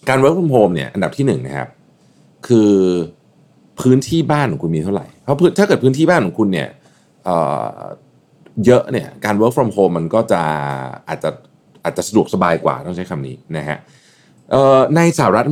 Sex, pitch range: male, 85-135 Hz